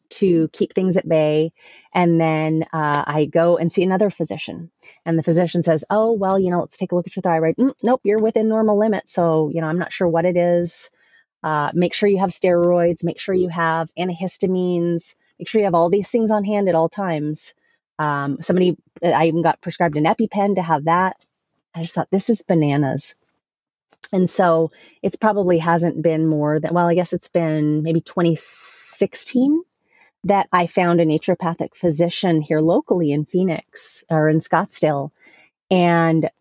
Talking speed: 185 wpm